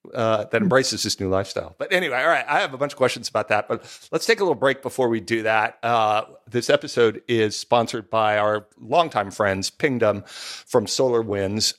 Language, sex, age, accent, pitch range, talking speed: English, male, 40-59, American, 105-135 Hz, 205 wpm